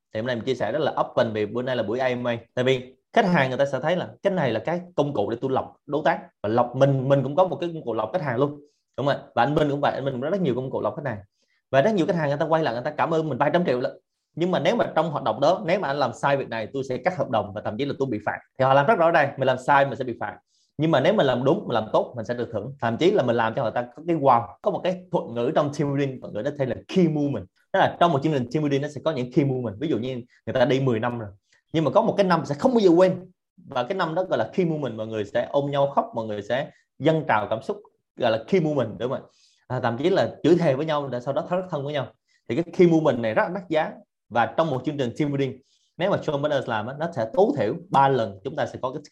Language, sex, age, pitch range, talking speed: Vietnamese, male, 20-39, 120-160 Hz, 330 wpm